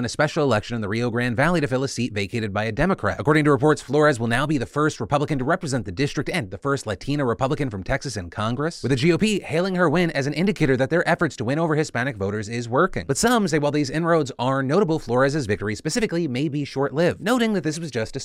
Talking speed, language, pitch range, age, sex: 260 wpm, English, 120-160 Hz, 30-49, male